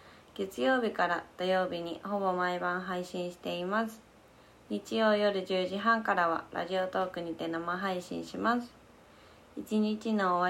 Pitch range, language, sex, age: 175-200 Hz, Japanese, female, 20-39